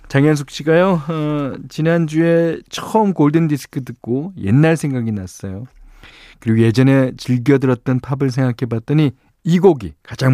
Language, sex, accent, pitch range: Korean, male, native, 105-150 Hz